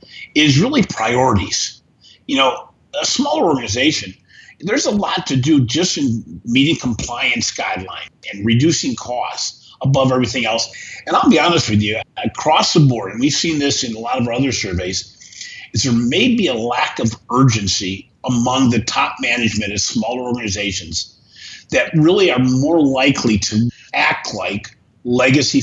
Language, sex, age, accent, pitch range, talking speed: English, male, 50-69, American, 110-140 Hz, 160 wpm